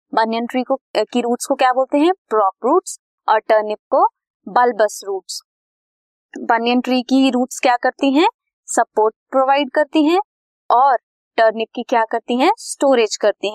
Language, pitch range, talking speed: Hindi, 225-320 Hz, 125 wpm